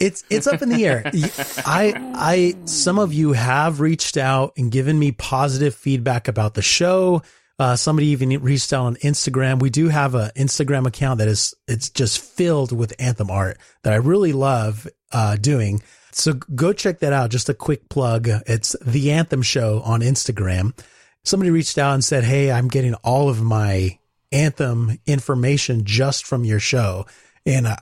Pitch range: 110-150 Hz